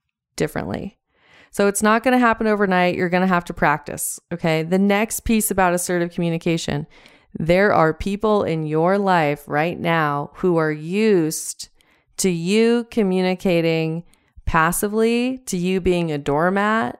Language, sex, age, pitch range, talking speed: English, female, 30-49, 160-195 Hz, 145 wpm